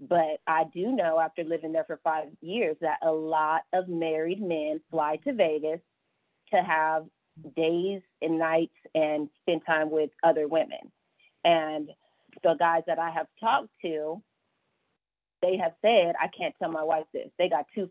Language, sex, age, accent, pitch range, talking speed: English, female, 30-49, American, 160-190 Hz, 170 wpm